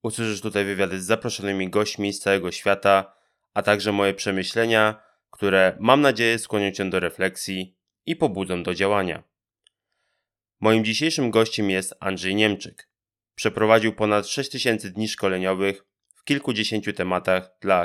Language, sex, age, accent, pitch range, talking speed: Polish, male, 20-39, native, 100-115 Hz, 130 wpm